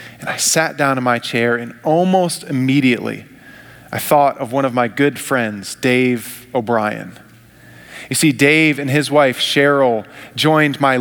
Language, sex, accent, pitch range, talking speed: English, male, American, 150-185 Hz, 160 wpm